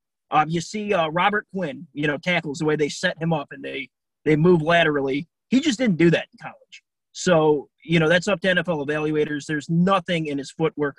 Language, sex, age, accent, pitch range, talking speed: English, male, 30-49, American, 150-180 Hz, 220 wpm